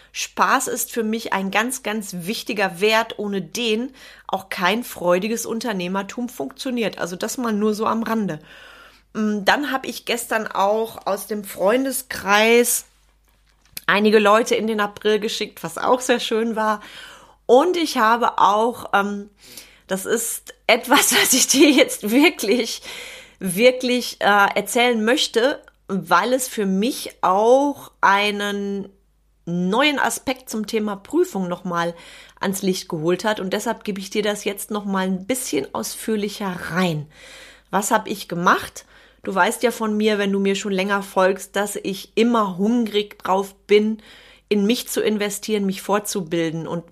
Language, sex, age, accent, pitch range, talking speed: German, female, 30-49, German, 195-235 Hz, 145 wpm